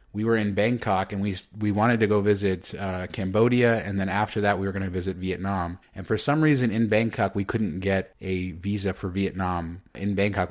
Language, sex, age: English, male, 30-49